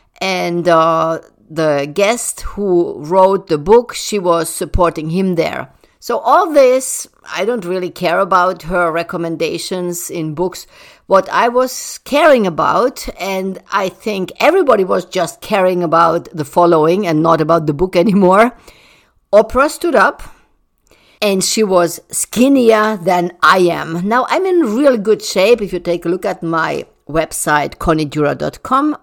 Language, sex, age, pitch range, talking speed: English, female, 50-69, 170-245 Hz, 145 wpm